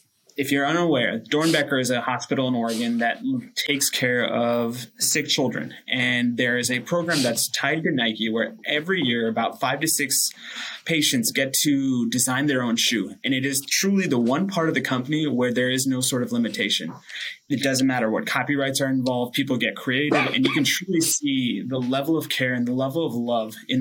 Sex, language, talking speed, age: male, English, 200 wpm, 20-39